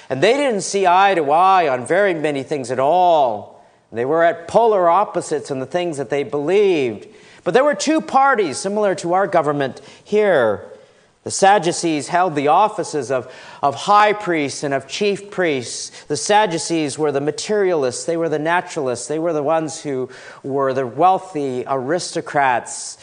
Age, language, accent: 40-59, English, American